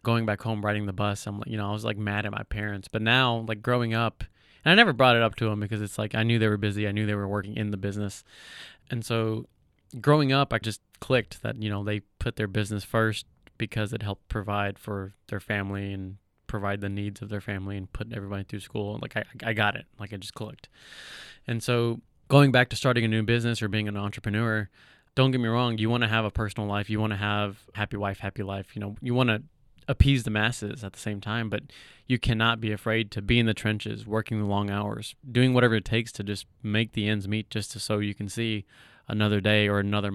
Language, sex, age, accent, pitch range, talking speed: English, male, 20-39, American, 100-115 Hz, 250 wpm